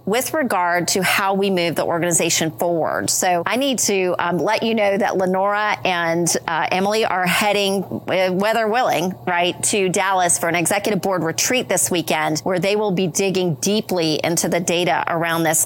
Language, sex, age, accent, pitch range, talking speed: English, female, 40-59, American, 170-200 Hz, 180 wpm